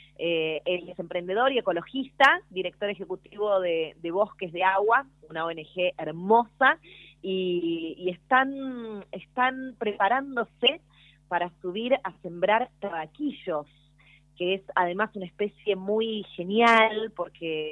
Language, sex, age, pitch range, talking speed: Spanish, female, 20-39, 170-225 Hz, 115 wpm